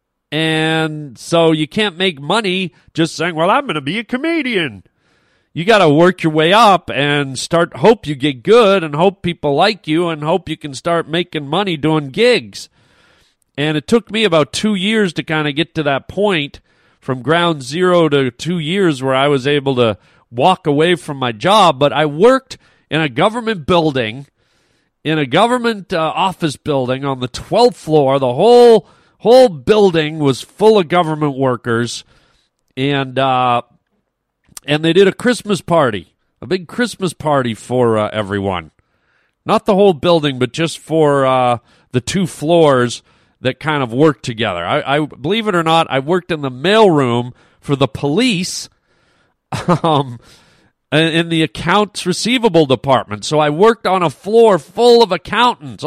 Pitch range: 135-185 Hz